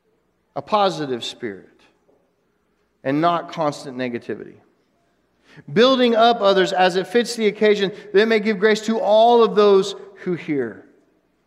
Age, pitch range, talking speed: 40-59, 165-210 Hz, 135 wpm